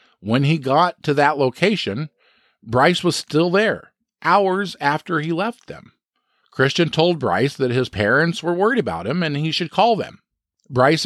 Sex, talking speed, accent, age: male, 170 wpm, American, 50-69